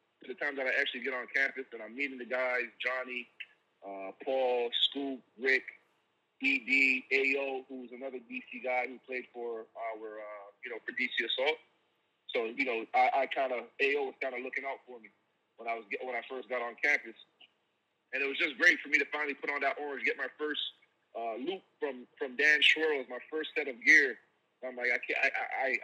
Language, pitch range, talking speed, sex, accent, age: English, 120-150 Hz, 220 wpm, male, American, 30-49